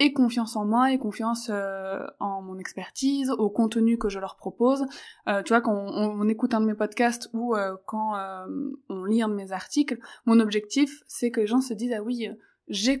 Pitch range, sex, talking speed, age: 200-235 Hz, female, 225 wpm, 20-39